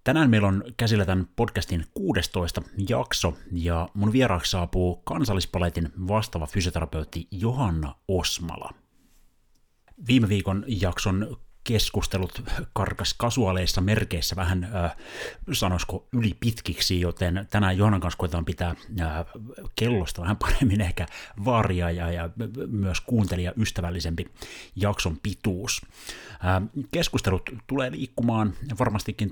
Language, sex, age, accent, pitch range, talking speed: Finnish, male, 30-49, native, 85-105 Hz, 95 wpm